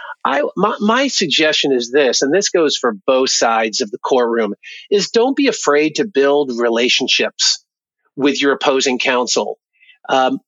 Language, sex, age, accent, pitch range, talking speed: English, male, 50-69, American, 130-185 Hz, 155 wpm